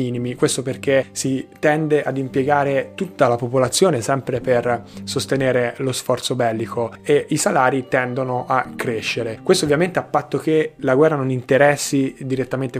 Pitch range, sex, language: 125-150 Hz, male, Italian